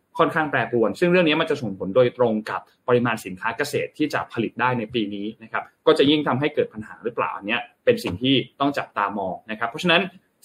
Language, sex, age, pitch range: Thai, male, 20-39, 120-155 Hz